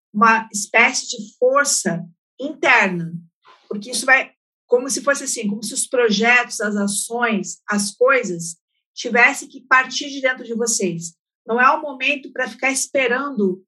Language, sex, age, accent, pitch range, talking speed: Portuguese, female, 50-69, Brazilian, 205-270 Hz, 150 wpm